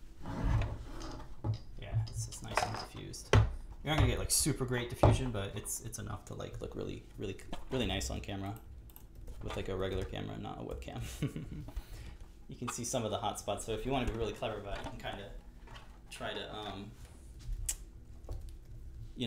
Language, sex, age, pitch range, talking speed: English, male, 20-39, 85-115 Hz, 190 wpm